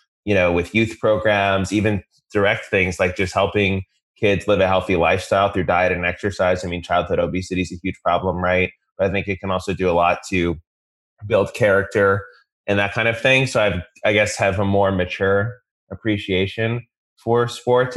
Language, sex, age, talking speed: English, male, 20-39, 190 wpm